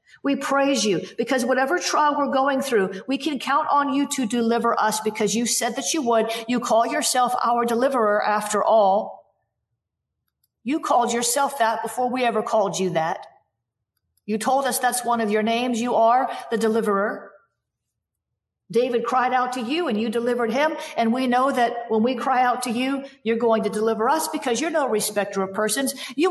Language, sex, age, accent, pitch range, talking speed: English, female, 50-69, American, 200-260 Hz, 190 wpm